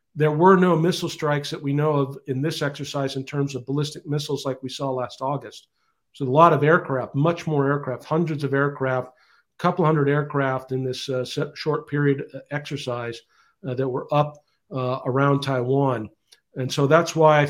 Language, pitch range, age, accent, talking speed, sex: English, 135-150 Hz, 50-69, American, 190 wpm, male